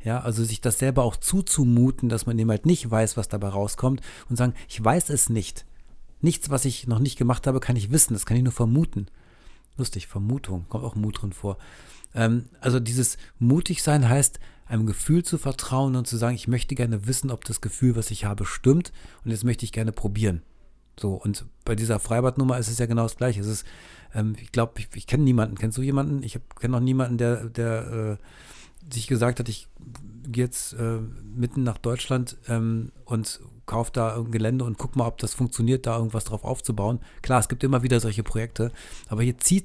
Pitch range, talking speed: 110-130 Hz, 210 wpm